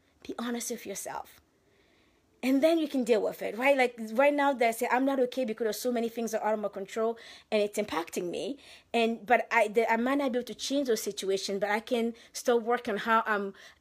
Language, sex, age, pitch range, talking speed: English, female, 30-49, 205-250 Hz, 250 wpm